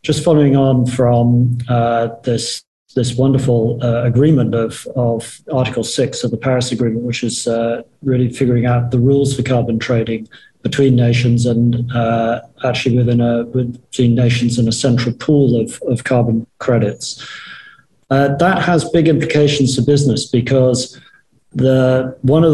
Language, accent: English, British